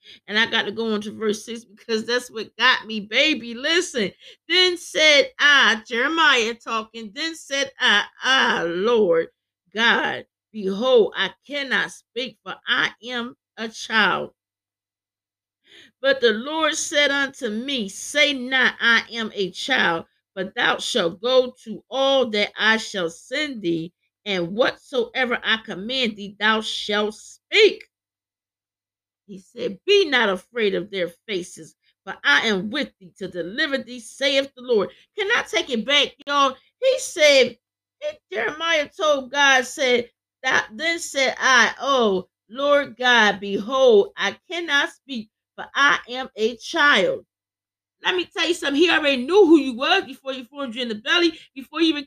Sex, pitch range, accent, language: female, 215-295 Hz, American, English